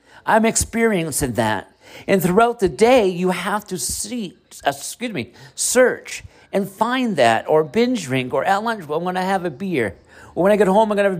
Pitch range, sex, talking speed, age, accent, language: 165-225 Hz, male, 215 wpm, 50-69, American, English